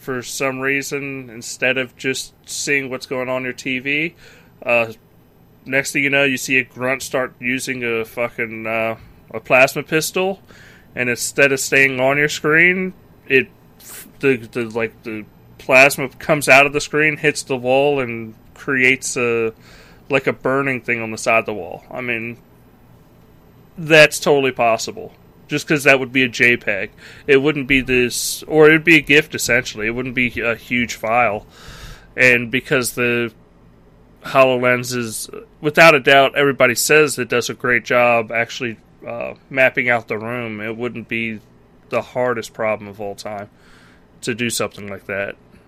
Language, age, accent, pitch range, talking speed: English, 30-49, American, 115-140 Hz, 170 wpm